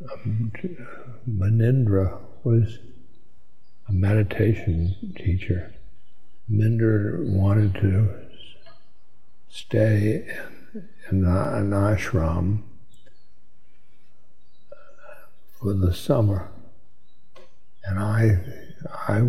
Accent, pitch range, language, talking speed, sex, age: American, 95-110 Hz, English, 60 wpm, male, 60-79